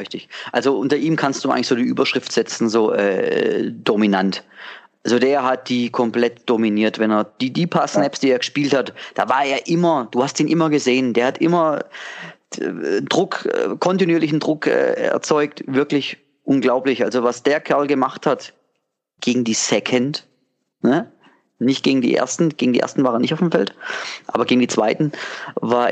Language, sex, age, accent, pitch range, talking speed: German, male, 30-49, German, 125-165 Hz, 175 wpm